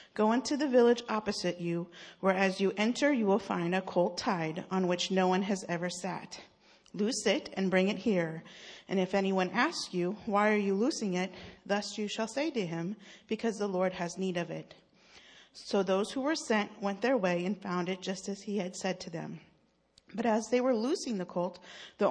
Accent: American